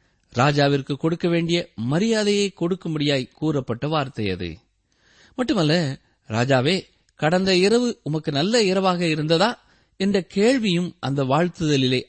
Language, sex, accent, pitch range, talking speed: Tamil, male, native, 115-180 Hz, 100 wpm